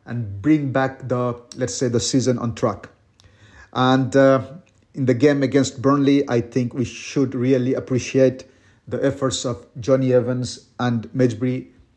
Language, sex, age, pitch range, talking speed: English, male, 50-69, 115-135 Hz, 150 wpm